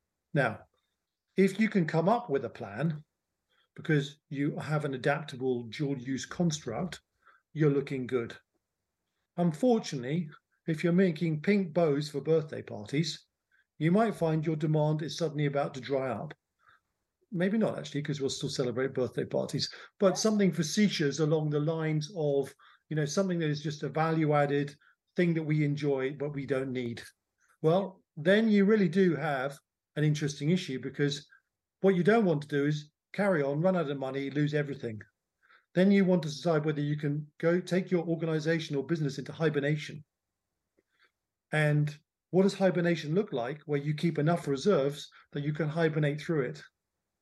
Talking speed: 165 wpm